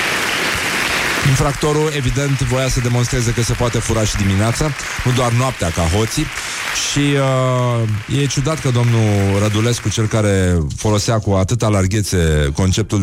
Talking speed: 140 wpm